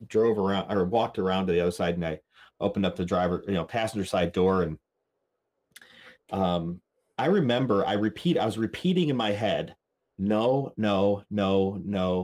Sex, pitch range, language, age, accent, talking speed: male, 95-115 Hz, English, 30-49, American, 180 wpm